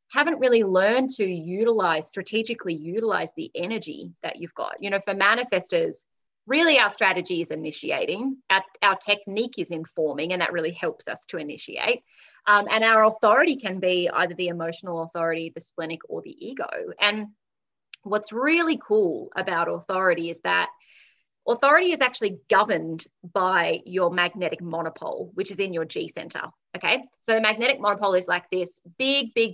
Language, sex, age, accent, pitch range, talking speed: English, female, 30-49, Australian, 180-265 Hz, 165 wpm